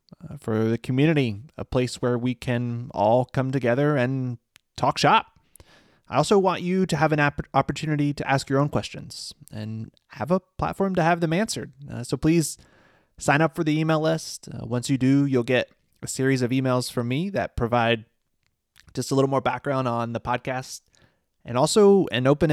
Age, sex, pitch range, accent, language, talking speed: 20-39, male, 120-150 Hz, American, English, 190 wpm